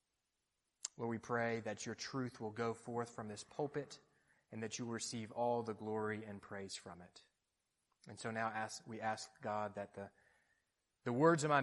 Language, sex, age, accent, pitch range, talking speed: English, male, 30-49, American, 110-160 Hz, 185 wpm